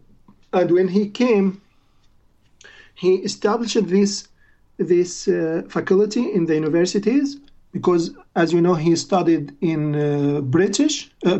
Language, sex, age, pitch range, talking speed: English, male, 50-69, 160-200 Hz, 120 wpm